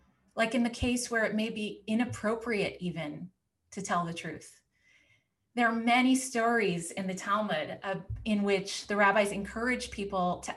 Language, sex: English, female